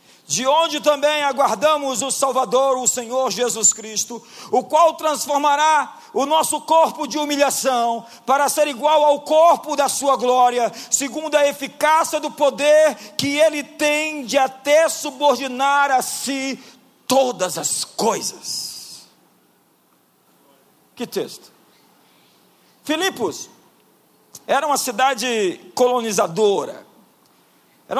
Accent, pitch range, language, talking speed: Brazilian, 225-290 Hz, Portuguese, 105 wpm